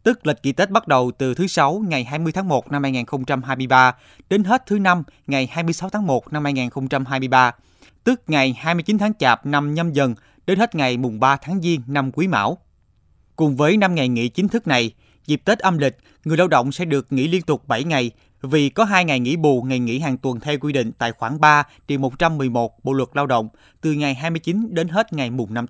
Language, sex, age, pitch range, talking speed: Vietnamese, male, 20-39, 130-170 Hz, 215 wpm